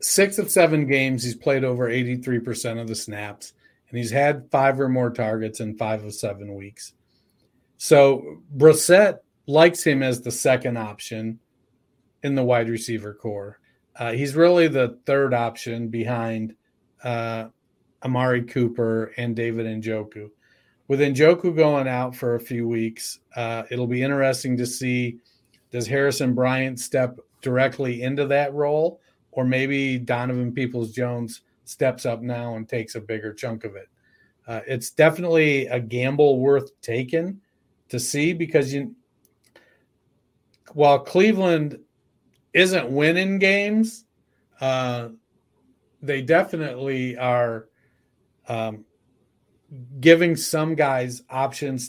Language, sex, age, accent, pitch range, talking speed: English, male, 40-59, American, 115-140 Hz, 125 wpm